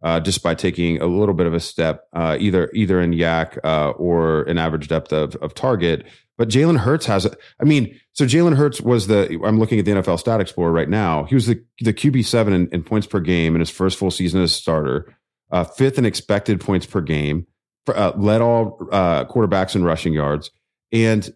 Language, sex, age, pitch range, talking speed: English, male, 30-49, 85-110 Hz, 220 wpm